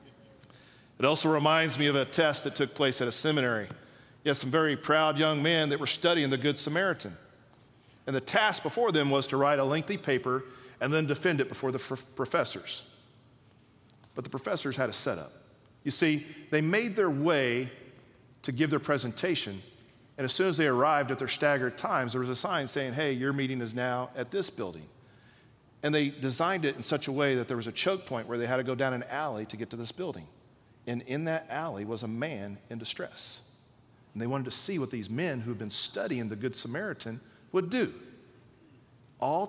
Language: English